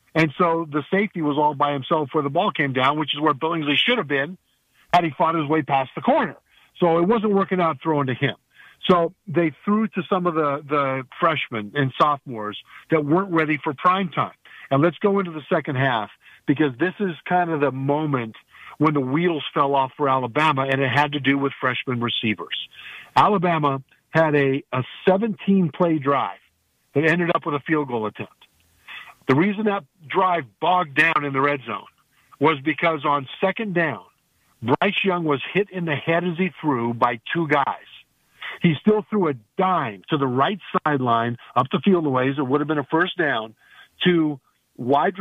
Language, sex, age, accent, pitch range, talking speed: English, male, 50-69, American, 135-180 Hz, 195 wpm